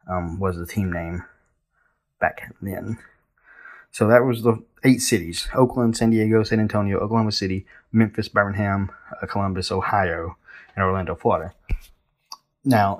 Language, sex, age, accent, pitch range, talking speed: English, male, 20-39, American, 95-115 Hz, 130 wpm